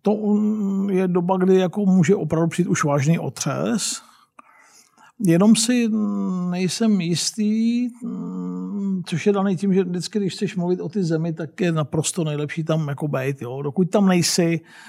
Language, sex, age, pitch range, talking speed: Czech, male, 50-69, 155-185 Hz, 155 wpm